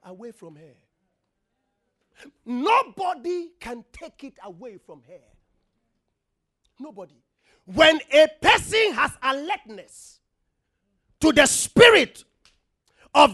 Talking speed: 90 wpm